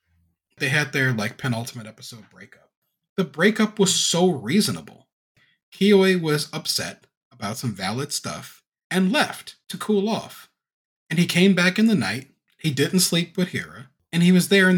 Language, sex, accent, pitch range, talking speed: English, male, American, 130-200 Hz, 165 wpm